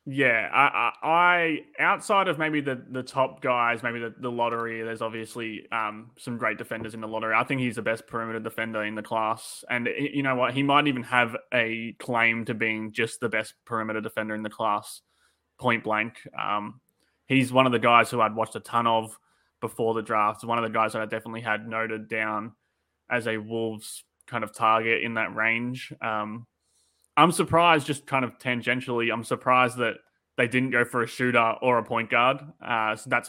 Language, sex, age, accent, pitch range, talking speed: English, male, 20-39, Australian, 110-125 Hz, 205 wpm